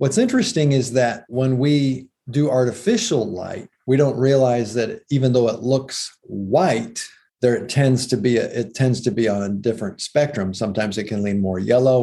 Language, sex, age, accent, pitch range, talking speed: English, male, 40-59, American, 110-135 Hz, 190 wpm